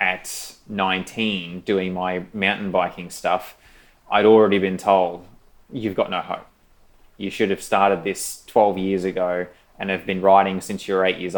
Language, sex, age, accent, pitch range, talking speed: English, male, 20-39, Australian, 95-110 Hz, 170 wpm